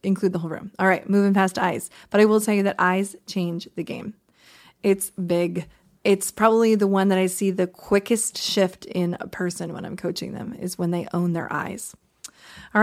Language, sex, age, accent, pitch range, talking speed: English, female, 20-39, American, 190-240 Hz, 210 wpm